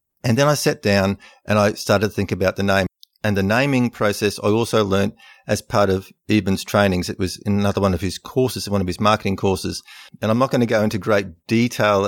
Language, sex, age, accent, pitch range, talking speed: English, male, 50-69, Australian, 95-110 Hz, 235 wpm